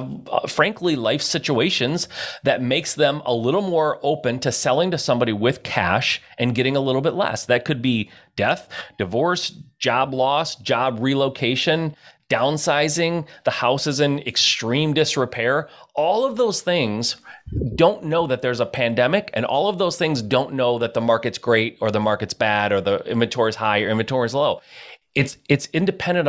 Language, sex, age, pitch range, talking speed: English, male, 30-49, 125-170 Hz, 175 wpm